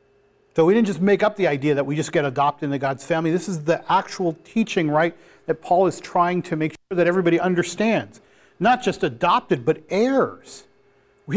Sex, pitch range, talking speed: male, 150-205 Hz, 200 wpm